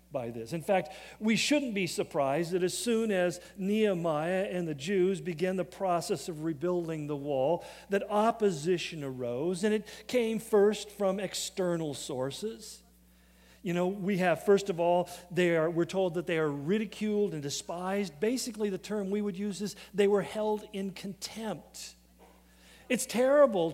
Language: English